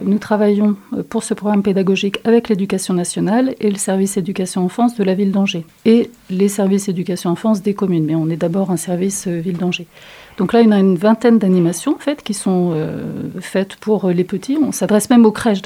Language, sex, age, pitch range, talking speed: French, female, 40-59, 185-220 Hz, 200 wpm